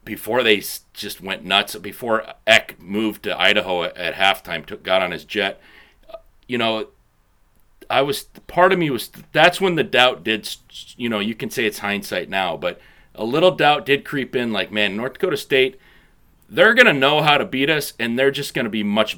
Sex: male